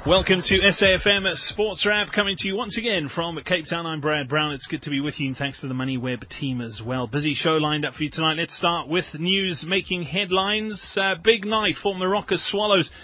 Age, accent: 30-49, British